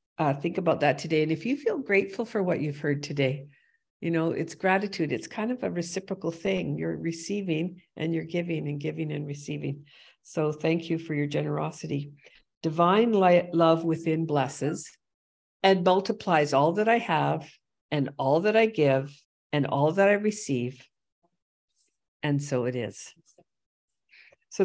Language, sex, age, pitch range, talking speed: English, female, 50-69, 145-175 Hz, 160 wpm